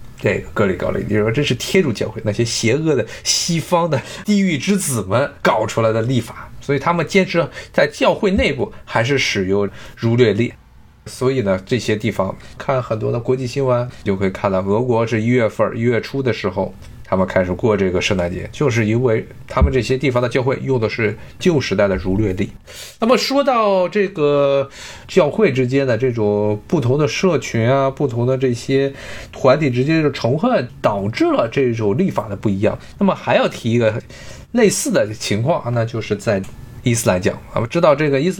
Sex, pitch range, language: male, 110-145 Hz, Chinese